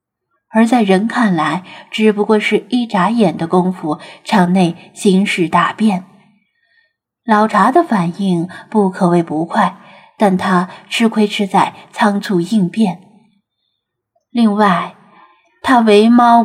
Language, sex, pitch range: Chinese, female, 185-235 Hz